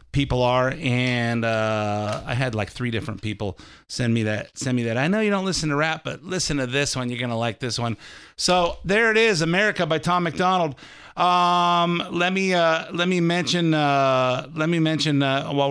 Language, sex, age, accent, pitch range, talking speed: English, male, 50-69, American, 135-160 Hz, 205 wpm